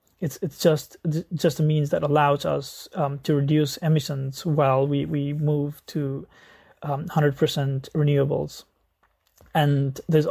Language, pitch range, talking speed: English, 140-155 Hz, 140 wpm